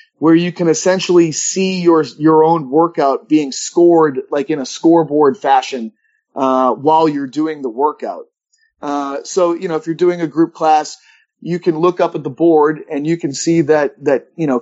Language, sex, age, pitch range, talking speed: English, male, 30-49, 140-170 Hz, 195 wpm